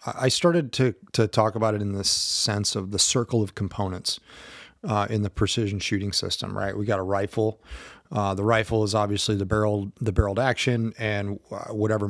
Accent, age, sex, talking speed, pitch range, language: American, 30-49, male, 190 wpm, 100-115 Hz, English